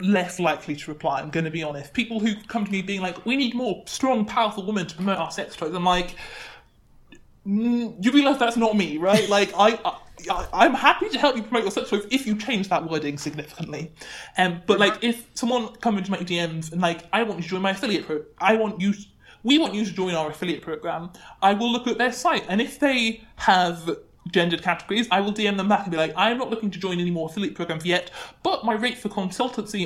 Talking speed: 245 wpm